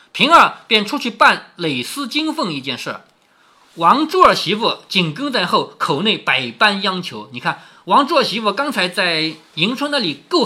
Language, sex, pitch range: Chinese, male, 160-260 Hz